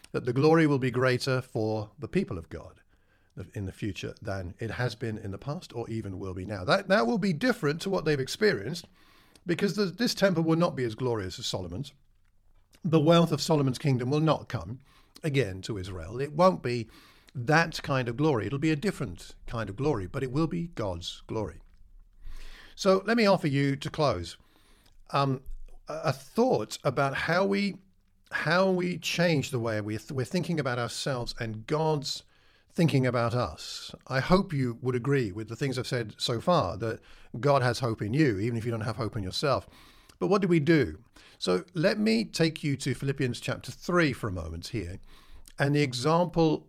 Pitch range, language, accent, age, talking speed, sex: 105-155 Hz, English, British, 50-69, 195 wpm, male